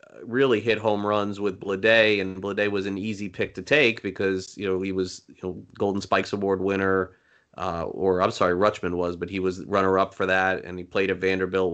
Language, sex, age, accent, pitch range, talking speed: English, male, 30-49, American, 95-105 Hz, 210 wpm